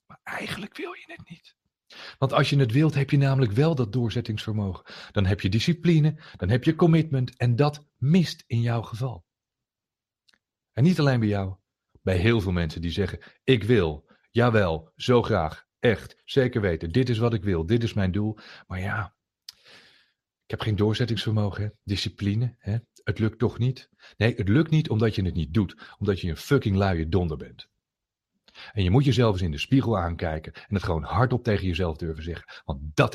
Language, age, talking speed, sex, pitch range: Dutch, 40-59, 190 wpm, male, 95-130 Hz